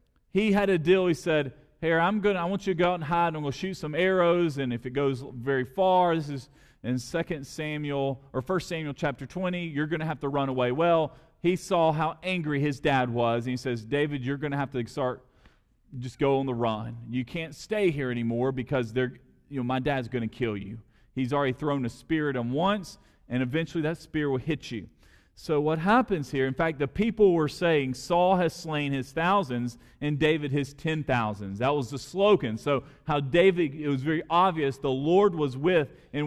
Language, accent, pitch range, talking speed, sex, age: English, American, 130-170 Hz, 220 wpm, male, 40-59